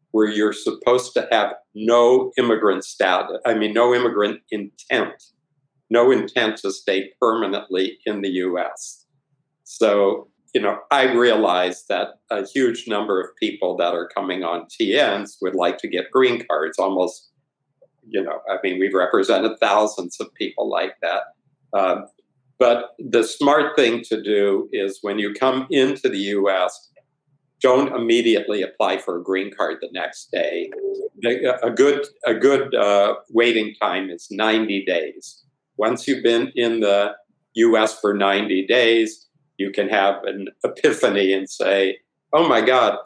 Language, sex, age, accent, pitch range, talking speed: English, male, 50-69, American, 100-130 Hz, 150 wpm